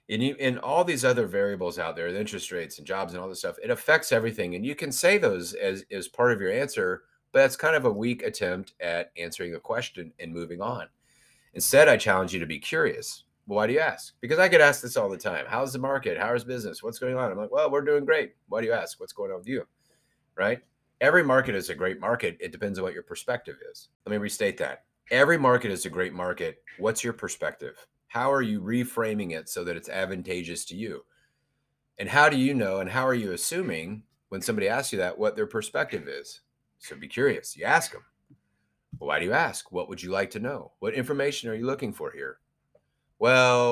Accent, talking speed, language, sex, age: American, 235 wpm, English, male, 30-49